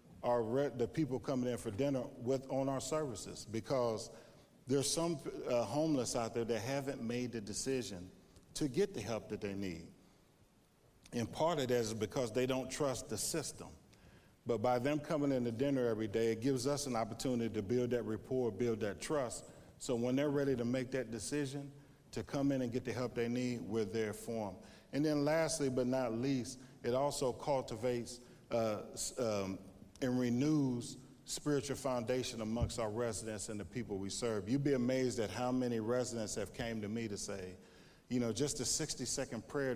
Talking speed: 190 wpm